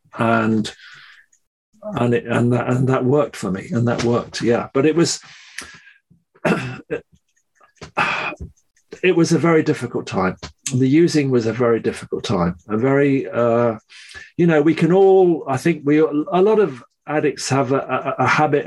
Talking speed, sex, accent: 160 wpm, male, British